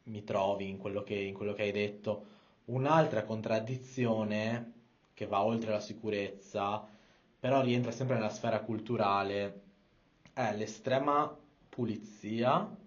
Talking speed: 110 wpm